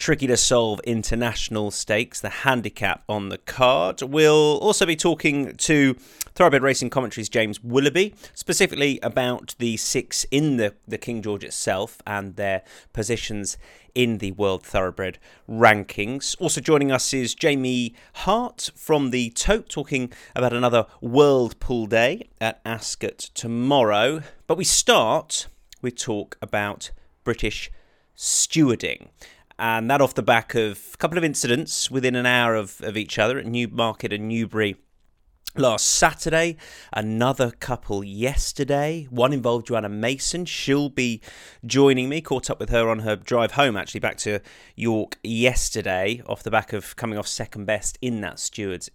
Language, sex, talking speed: English, male, 150 wpm